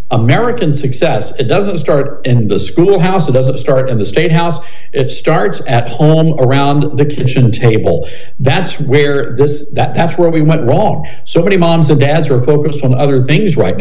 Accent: American